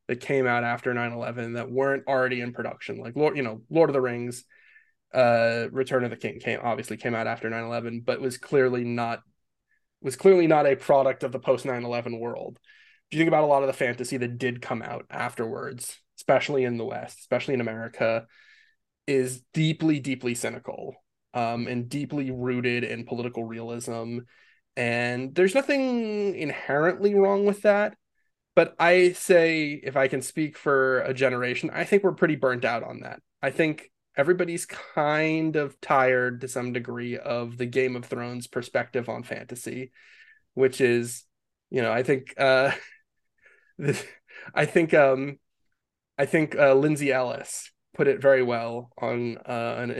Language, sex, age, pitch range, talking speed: English, male, 20-39, 120-150 Hz, 170 wpm